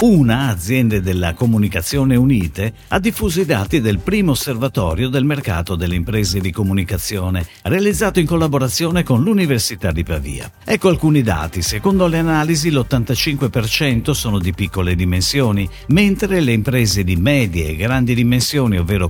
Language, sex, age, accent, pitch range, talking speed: Italian, male, 50-69, native, 95-150 Hz, 140 wpm